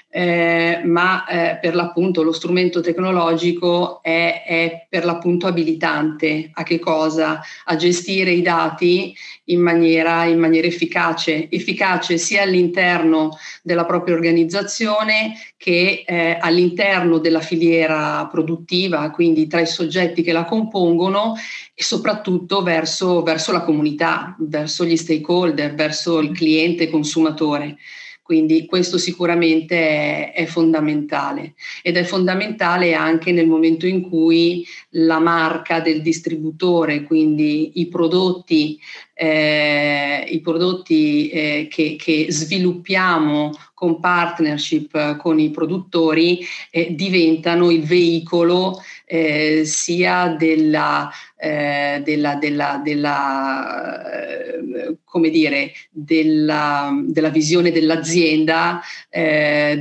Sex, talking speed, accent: female, 95 wpm, native